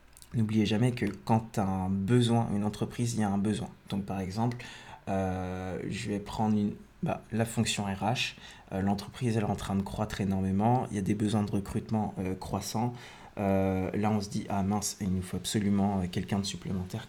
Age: 20-39